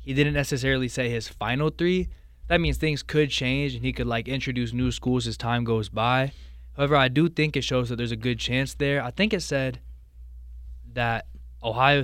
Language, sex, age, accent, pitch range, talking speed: English, male, 20-39, American, 110-130 Hz, 205 wpm